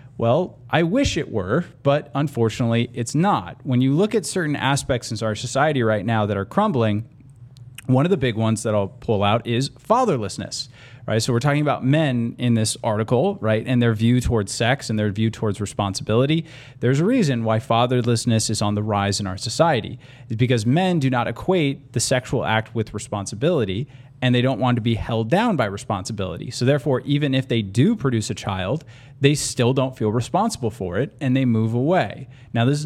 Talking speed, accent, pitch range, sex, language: 200 wpm, American, 110-135 Hz, male, English